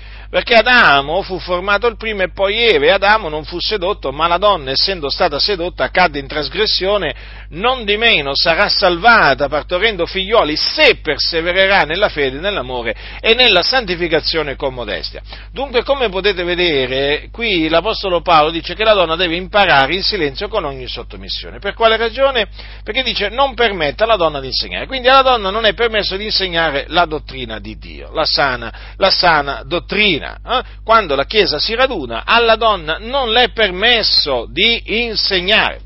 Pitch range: 145-230 Hz